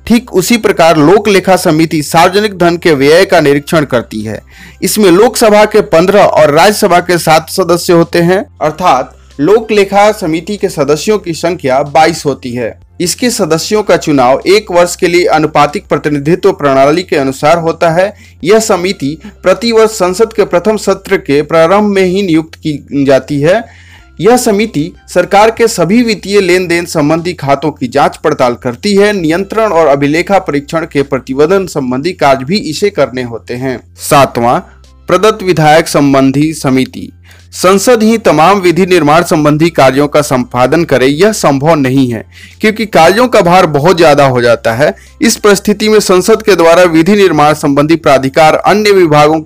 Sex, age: male, 30-49